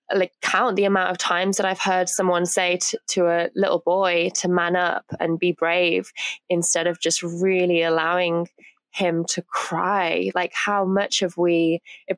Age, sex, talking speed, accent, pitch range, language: 20-39, female, 175 wpm, British, 165-195 Hz, English